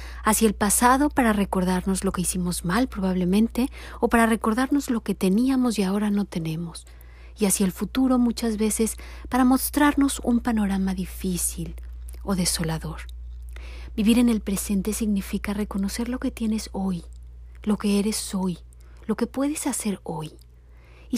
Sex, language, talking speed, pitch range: female, Spanish, 150 wpm, 175-235 Hz